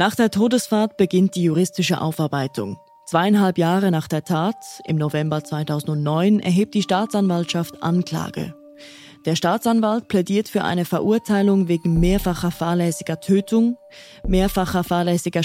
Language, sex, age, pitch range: German, female, 20-39, 165-205 Hz